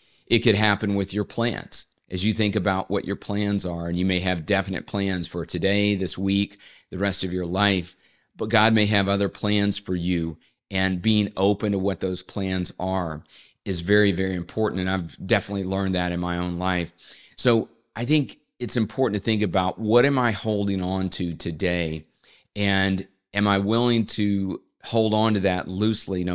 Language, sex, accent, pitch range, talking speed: English, male, American, 90-105 Hz, 190 wpm